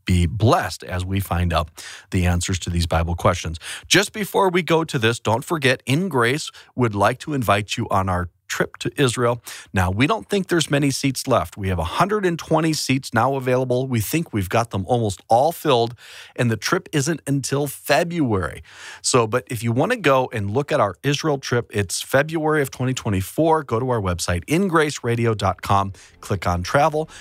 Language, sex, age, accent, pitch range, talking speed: English, male, 40-59, American, 100-125 Hz, 185 wpm